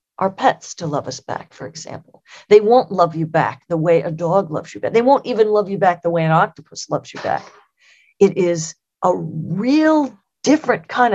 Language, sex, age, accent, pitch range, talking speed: English, female, 40-59, American, 160-200 Hz, 210 wpm